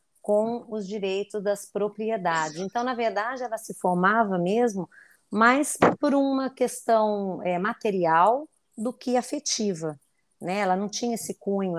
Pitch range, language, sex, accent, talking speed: 185-235 Hz, Portuguese, female, Brazilian, 135 wpm